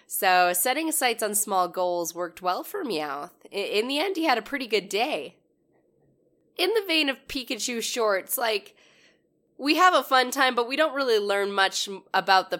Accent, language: American, English